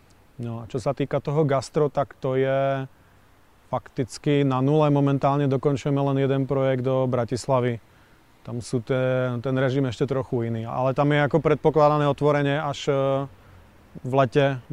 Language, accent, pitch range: Czech, native, 120-140 Hz